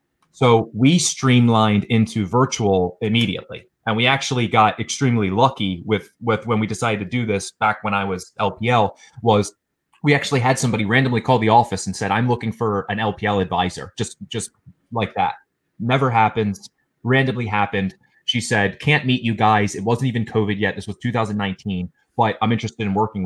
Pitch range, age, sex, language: 100-120 Hz, 30-49, male, English